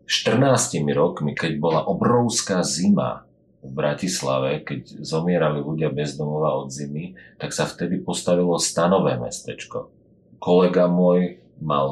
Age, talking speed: 40-59, 120 wpm